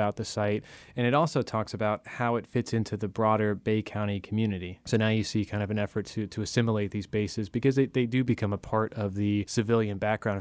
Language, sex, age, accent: English, male, 20-39, American